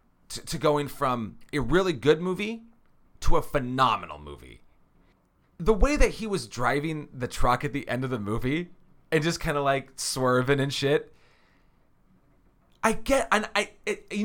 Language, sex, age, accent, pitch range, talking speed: English, male, 30-49, American, 130-210 Hz, 170 wpm